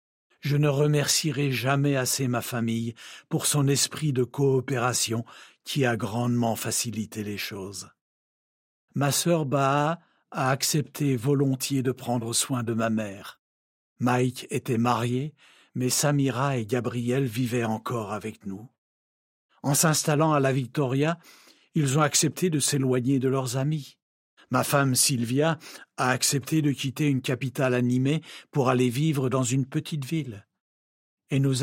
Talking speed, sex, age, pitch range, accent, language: 140 wpm, male, 60-79, 115-140 Hz, French, French